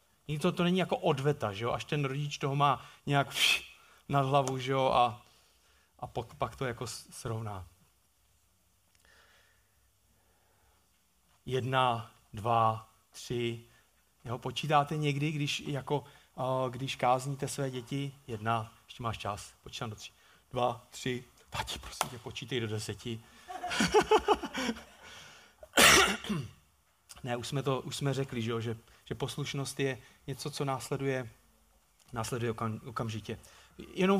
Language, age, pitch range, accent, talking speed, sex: Czech, 30-49, 115-150 Hz, native, 115 wpm, male